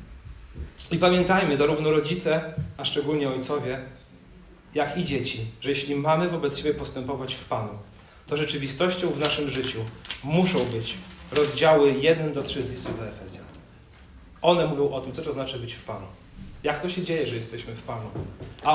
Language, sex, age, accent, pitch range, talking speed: Polish, male, 40-59, native, 135-180 Hz, 165 wpm